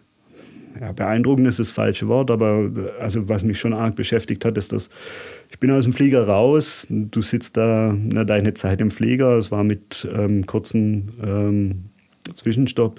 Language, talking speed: German, 170 wpm